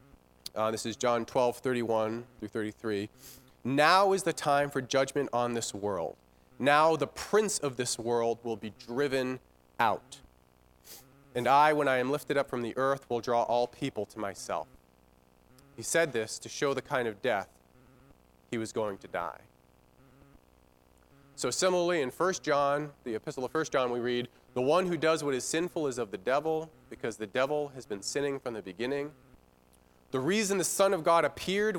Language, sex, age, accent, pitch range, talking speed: English, male, 30-49, American, 100-150 Hz, 180 wpm